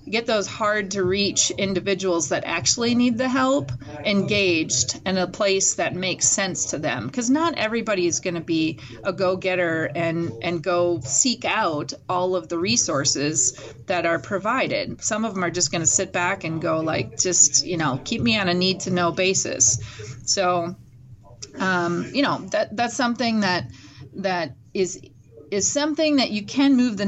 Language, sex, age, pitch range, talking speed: English, female, 30-49, 160-195 Hz, 170 wpm